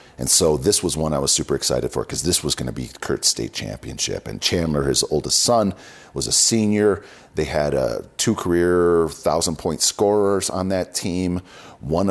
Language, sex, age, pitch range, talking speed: English, male, 40-59, 70-95 Hz, 195 wpm